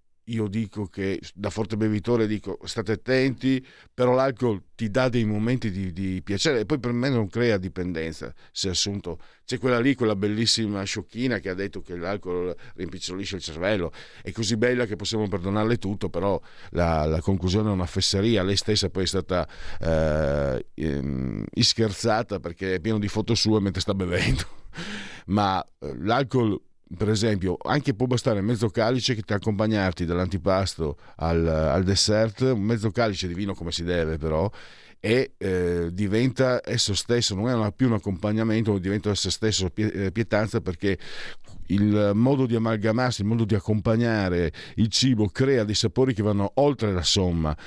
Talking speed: 165 wpm